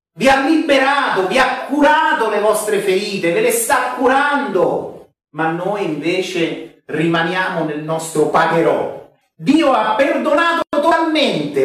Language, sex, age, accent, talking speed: Italian, male, 40-59, native, 125 wpm